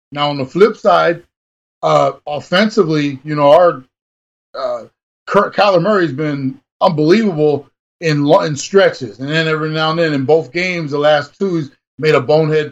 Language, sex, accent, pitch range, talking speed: English, male, American, 140-170 Hz, 165 wpm